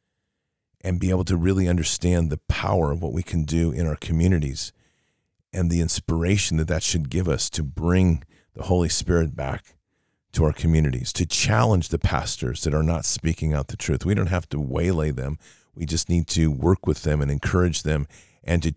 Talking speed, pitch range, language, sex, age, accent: 200 wpm, 80-95 Hz, English, male, 40-59, American